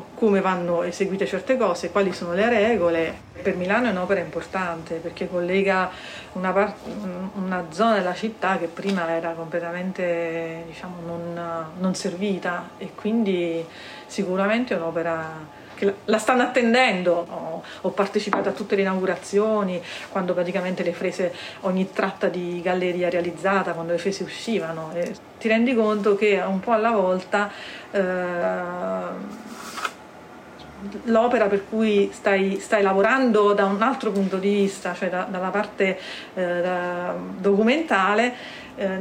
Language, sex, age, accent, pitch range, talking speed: Italian, female, 40-59, native, 175-205 Hz, 140 wpm